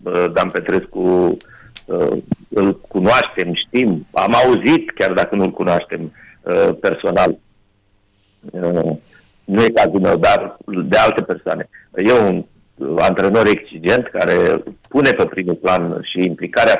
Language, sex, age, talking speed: Romanian, male, 50-69, 110 wpm